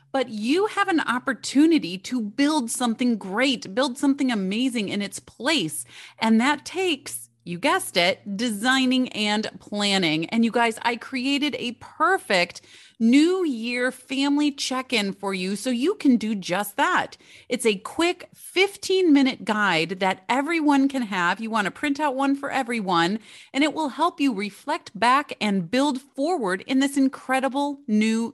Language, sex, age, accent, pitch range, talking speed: English, female, 30-49, American, 200-270 Hz, 155 wpm